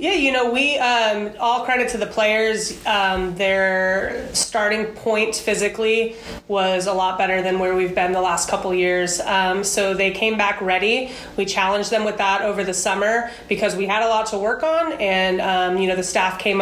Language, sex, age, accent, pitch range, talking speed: English, female, 30-49, American, 190-220 Hz, 200 wpm